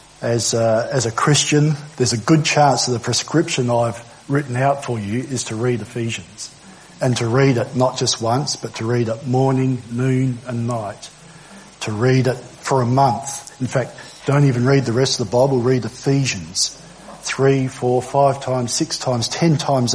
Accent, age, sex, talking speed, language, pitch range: Australian, 50-69, male, 185 wpm, English, 120-140 Hz